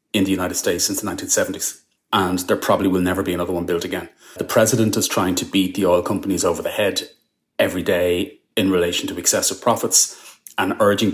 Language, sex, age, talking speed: English, male, 30-49, 205 wpm